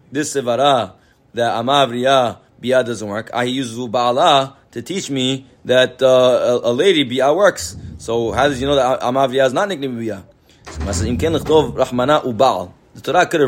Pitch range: 115-140 Hz